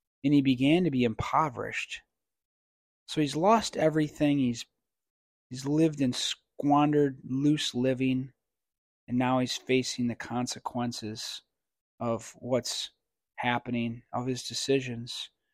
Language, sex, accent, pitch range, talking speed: English, male, American, 120-145 Hz, 110 wpm